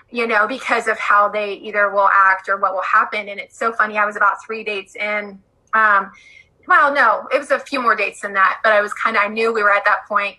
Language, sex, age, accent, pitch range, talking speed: English, female, 20-39, American, 210-255 Hz, 265 wpm